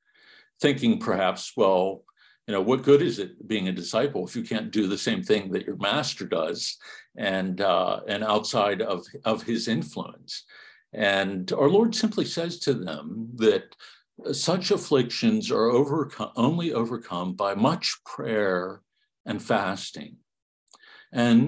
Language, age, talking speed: English, 60-79, 140 wpm